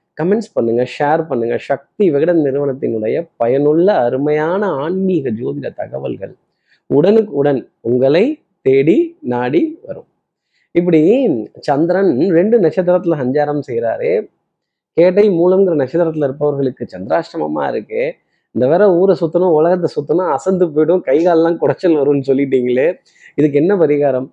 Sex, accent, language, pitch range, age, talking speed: male, native, Tamil, 135-185 Hz, 20-39, 110 wpm